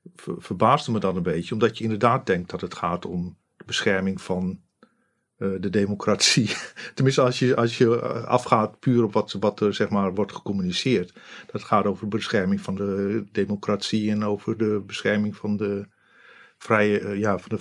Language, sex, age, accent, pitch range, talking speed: Dutch, male, 50-69, Dutch, 100-115 Hz, 150 wpm